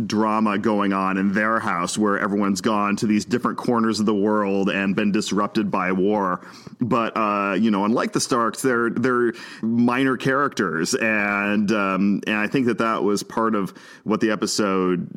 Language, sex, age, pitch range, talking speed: English, male, 40-59, 95-110 Hz, 180 wpm